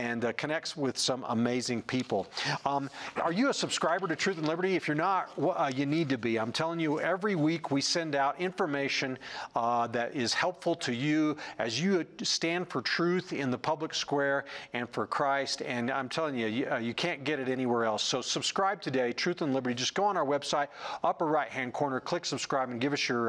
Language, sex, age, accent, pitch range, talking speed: English, male, 40-59, American, 125-165 Hz, 215 wpm